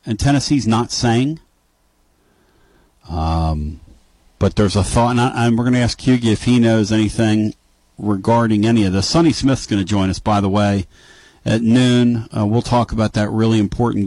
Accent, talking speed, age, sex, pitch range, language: American, 180 wpm, 50-69, male, 85-115 Hz, English